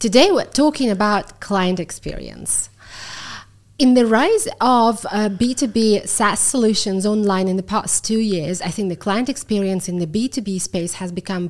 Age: 30-49